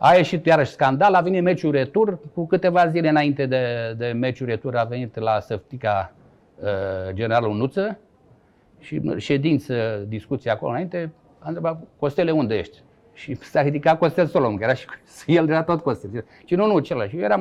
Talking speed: 170 wpm